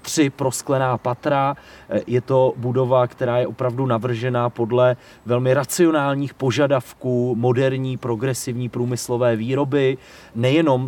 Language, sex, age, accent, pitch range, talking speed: Czech, male, 30-49, native, 120-135 Hz, 105 wpm